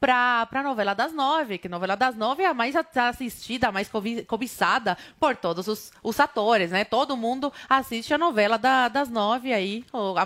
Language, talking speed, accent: Portuguese, 200 wpm, Brazilian